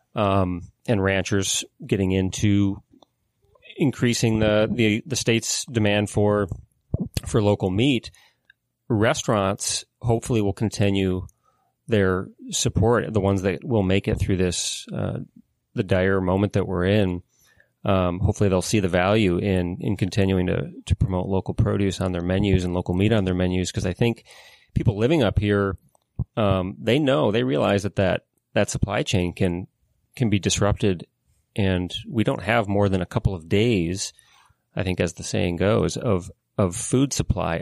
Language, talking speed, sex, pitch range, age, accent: English, 160 wpm, male, 95-110 Hz, 30-49, American